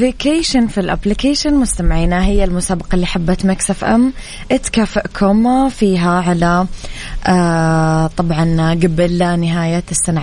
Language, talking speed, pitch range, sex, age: Arabic, 95 wpm, 170-190 Hz, female, 20-39